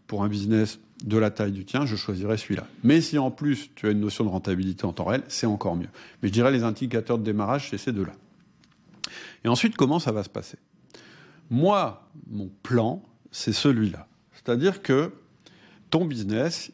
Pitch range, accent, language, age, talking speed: 100-140 Hz, French, French, 50-69, 190 wpm